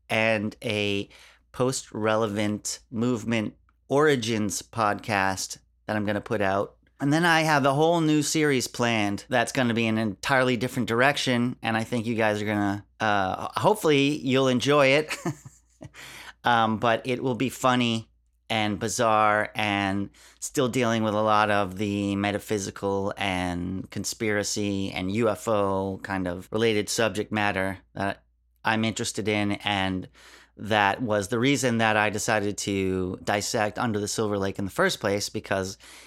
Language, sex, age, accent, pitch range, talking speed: English, male, 30-49, American, 95-120 Hz, 155 wpm